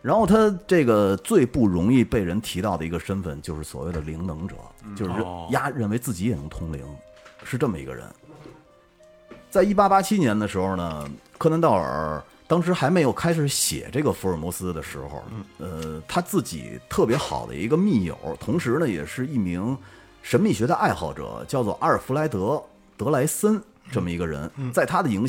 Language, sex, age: Chinese, male, 30-49